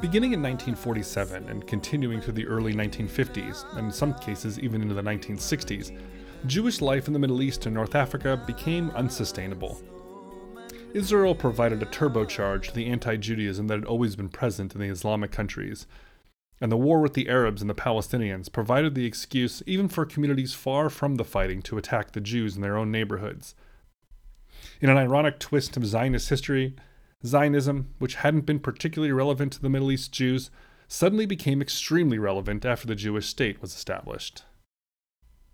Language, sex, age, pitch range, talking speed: English, male, 30-49, 105-140 Hz, 165 wpm